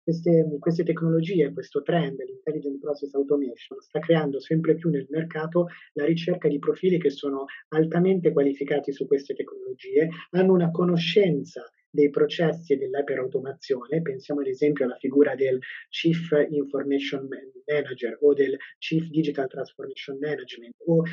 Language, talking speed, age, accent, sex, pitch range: Italian, 135 wpm, 30-49, native, male, 145-180 Hz